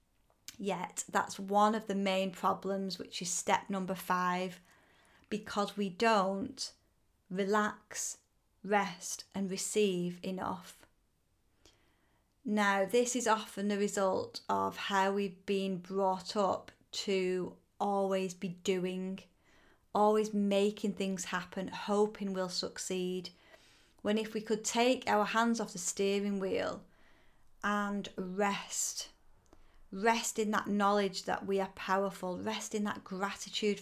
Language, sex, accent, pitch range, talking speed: English, female, British, 190-215 Hz, 120 wpm